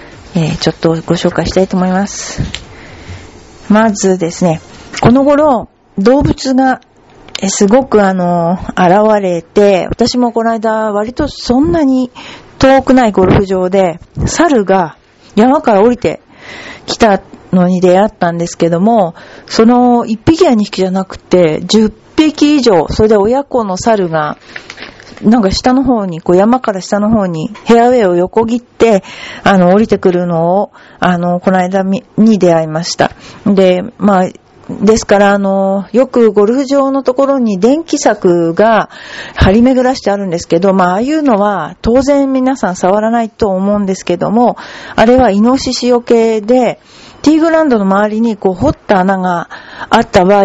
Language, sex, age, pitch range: Japanese, female, 40-59, 185-245 Hz